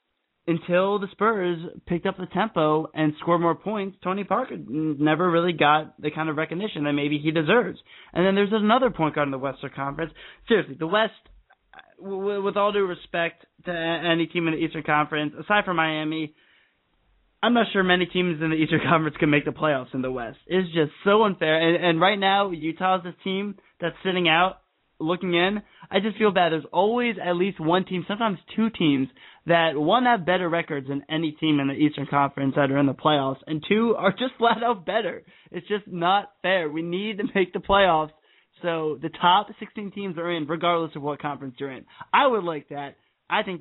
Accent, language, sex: American, English, male